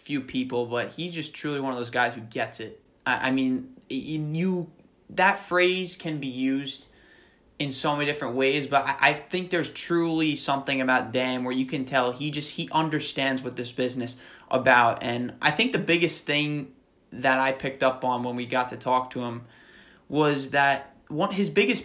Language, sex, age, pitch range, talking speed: English, male, 20-39, 125-150 Hz, 195 wpm